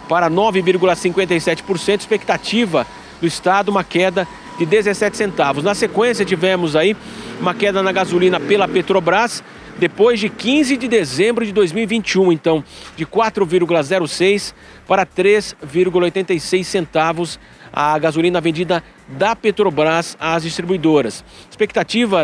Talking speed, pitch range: 110 wpm, 165-210 Hz